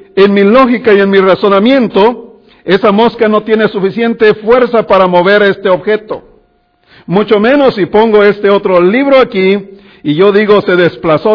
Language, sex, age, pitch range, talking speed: English, male, 60-79, 160-215 Hz, 160 wpm